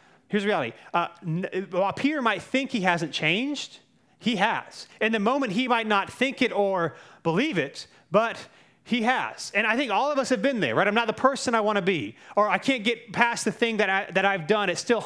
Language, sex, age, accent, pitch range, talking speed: English, male, 30-49, American, 175-220 Hz, 230 wpm